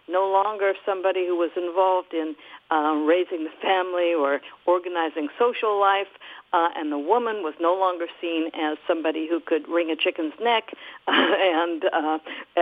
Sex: female